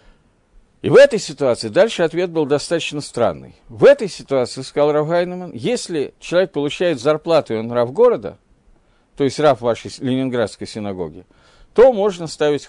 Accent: native